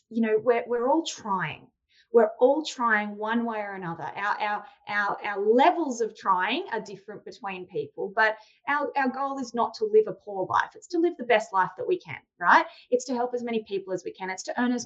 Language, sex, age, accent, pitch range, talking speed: English, female, 20-39, Australian, 210-250 Hz, 235 wpm